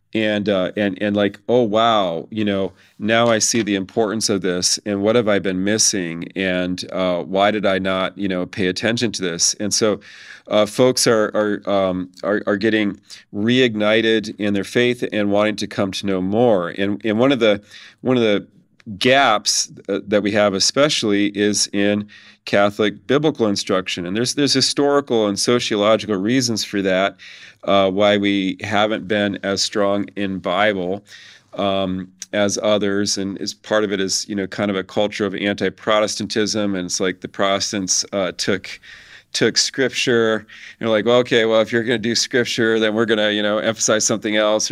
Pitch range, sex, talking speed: 100-110 Hz, male, 185 wpm